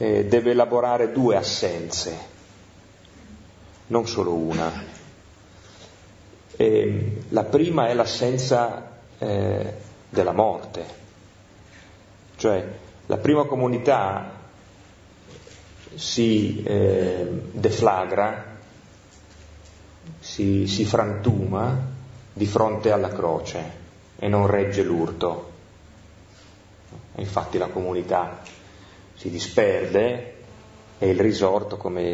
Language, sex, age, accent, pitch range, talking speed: Italian, male, 30-49, native, 90-110 Hz, 75 wpm